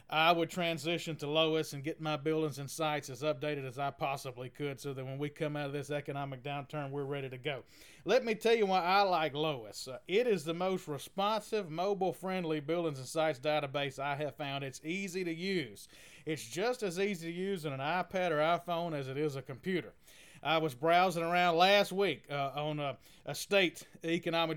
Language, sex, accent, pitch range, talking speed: English, male, American, 145-175 Hz, 205 wpm